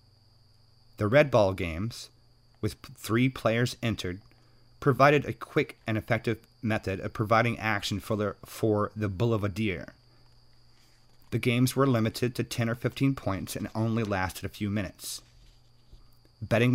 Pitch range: 105-120 Hz